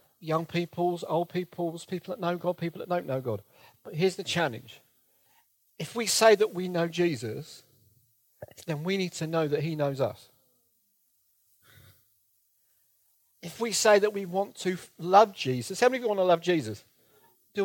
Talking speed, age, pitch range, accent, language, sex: 175 wpm, 50-69, 115-180 Hz, British, English, male